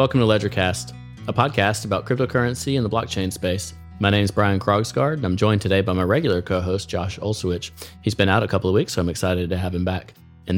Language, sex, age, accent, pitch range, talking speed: English, male, 30-49, American, 95-115 Hz, 235 wpm